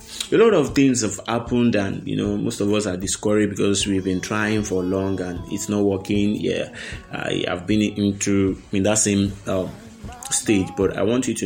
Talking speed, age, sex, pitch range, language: 200 wpm, 20-39, male, 100-115 Hz, English